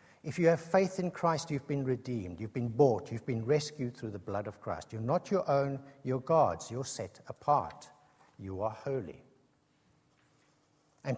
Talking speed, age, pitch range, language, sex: 175 wpm, 60-79, 125-165 Hz, English, male